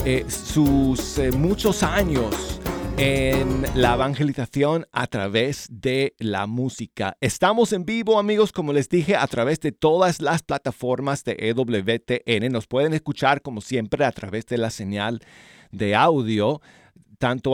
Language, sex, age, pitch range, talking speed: Spanish, male, 40-59, 105-140 Hz, 140 wpm